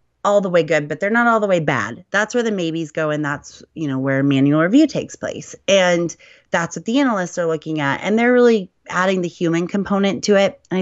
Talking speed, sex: 240 wpm, female